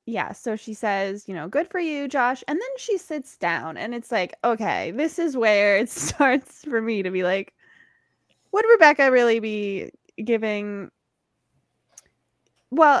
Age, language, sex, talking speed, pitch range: 20-39, English, female, 160 wpm, 195-265 Hz